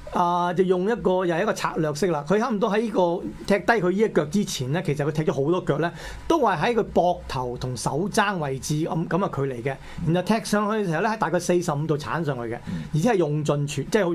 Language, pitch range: Chinese, 150-205 Hz